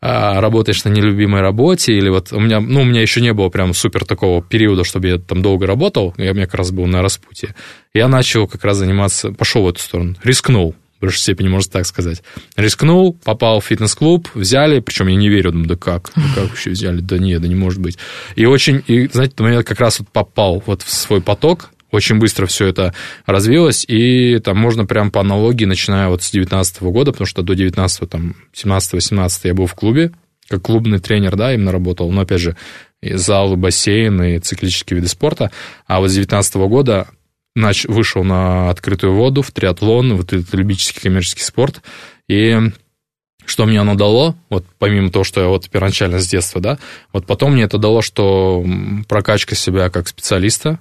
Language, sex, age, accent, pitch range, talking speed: Russian, male, 20-39, native, 90-110 Hz, 195 wpm